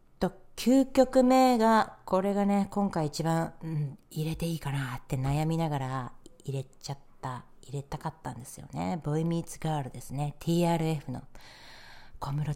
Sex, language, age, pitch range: female, Japanese, 40-59, 135-180 Hz